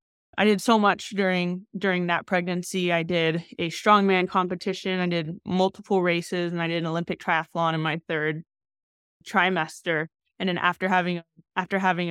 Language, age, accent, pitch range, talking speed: English, 20-39, American, 160-190 Hz, 165 wpm